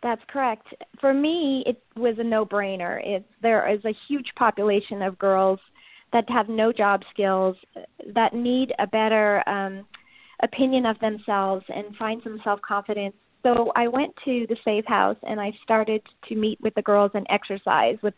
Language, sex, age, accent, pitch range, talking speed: English, female, 40-59, American, 200-230 Hz, 165 wpm